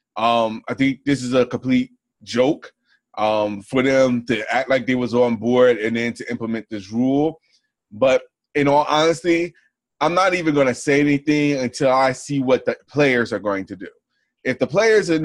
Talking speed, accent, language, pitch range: 195 wpm, American, English, 115-140 Hz